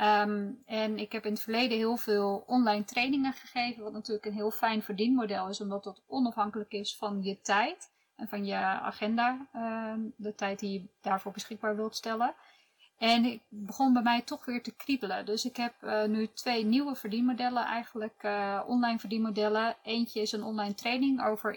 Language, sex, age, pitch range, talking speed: Dutch, female, 20-39, 210-235 Hz, 185 wpm